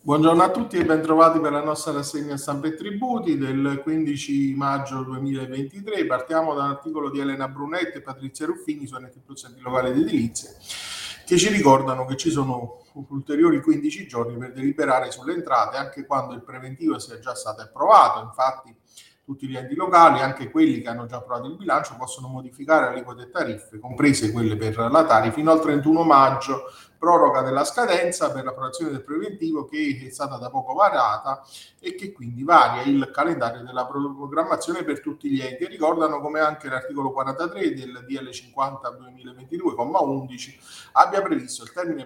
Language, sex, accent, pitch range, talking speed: Italian, male, native, 130-155 Hz, 165 wpm